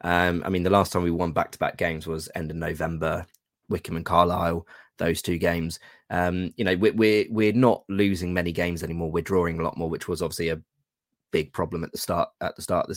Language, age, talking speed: English, 20-39, 225 wpm